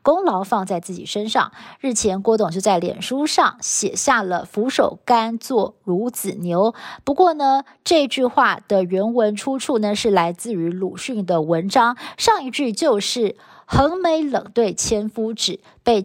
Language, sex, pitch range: Chinese, female, 200-255 Hz